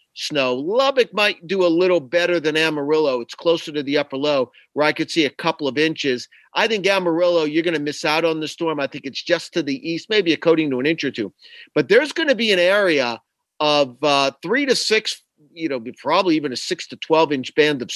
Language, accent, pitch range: English, American, 145-180 Hz